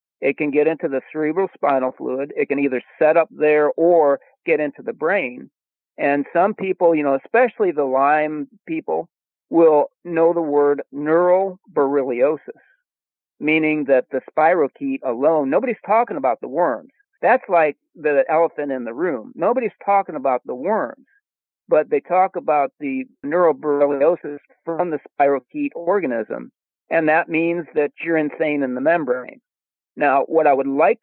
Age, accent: 50-69, American